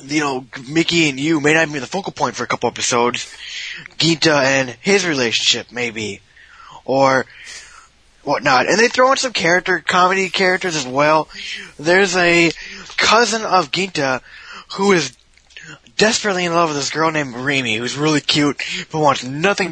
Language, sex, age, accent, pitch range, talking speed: English, male, 20-39, American, 130-180 Hz, 165 wpm